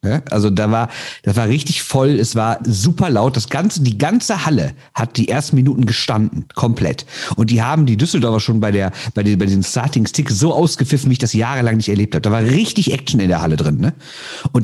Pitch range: 105-145 Hz